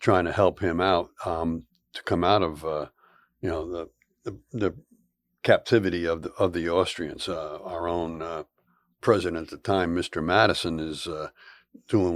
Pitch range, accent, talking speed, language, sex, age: 85-105 Hz, American, 175 wpm, English, male, 60-79